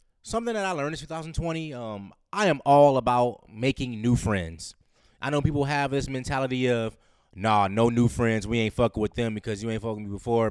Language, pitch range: English, 105-140 Hz